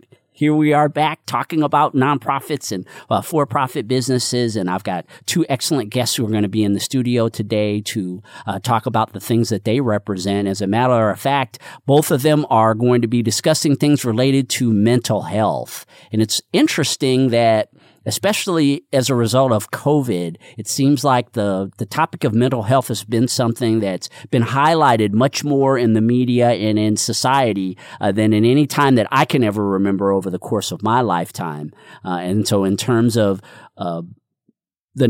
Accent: American